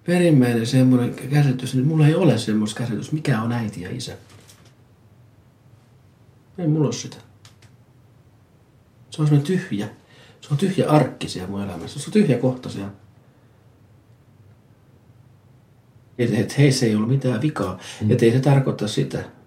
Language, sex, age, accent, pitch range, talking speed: Finnish, male, 40-59, native, 105-140 Hz, 135 wpm